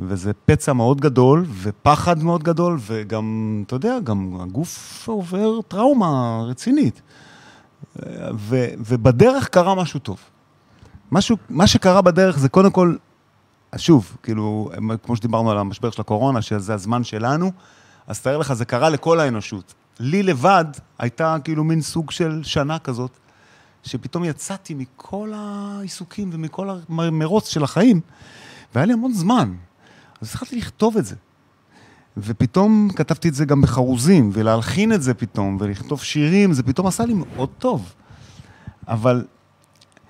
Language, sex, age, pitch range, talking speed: Hebrew, male, 30-49, 115-175 Hz, 135 wpm